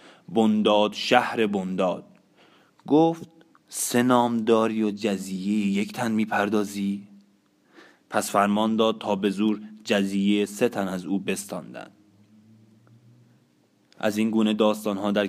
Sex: male